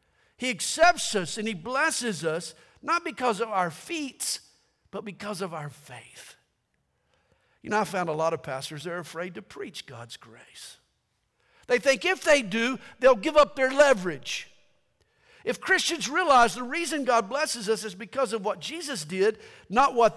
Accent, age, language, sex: American, 50-69, English, male